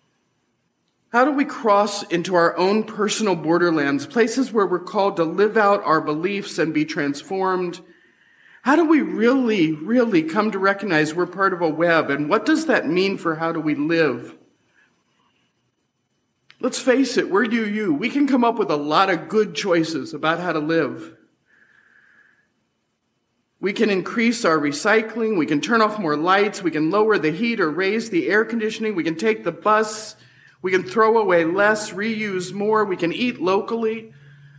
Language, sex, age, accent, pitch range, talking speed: English, male, 40-59, American, 170-230 Hz, 175 wpm